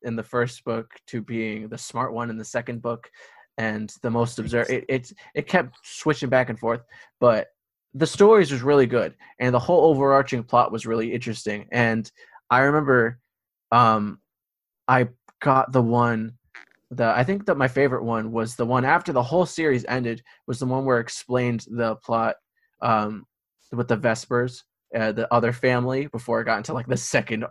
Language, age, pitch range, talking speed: English, 20-39, 115-130 Hz, 185 wpm